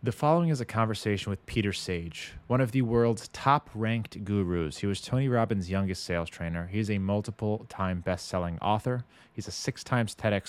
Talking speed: 170 wpm